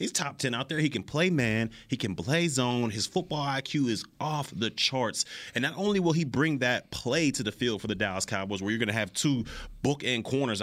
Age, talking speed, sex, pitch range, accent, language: 30-49, 250 wpm, male, 110-170 Hz, American, English